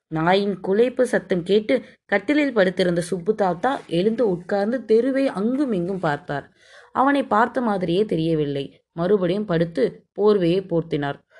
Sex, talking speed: female, 90 wpm